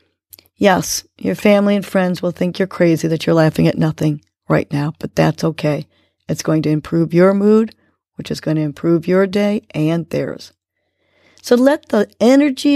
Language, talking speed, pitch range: English, 180 wpm, 170-250 Hz